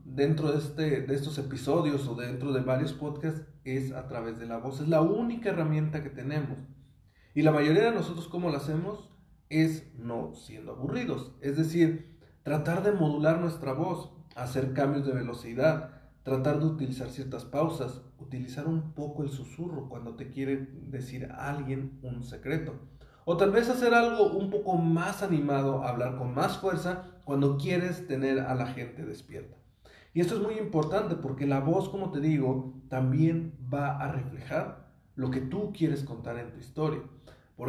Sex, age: male, 40-59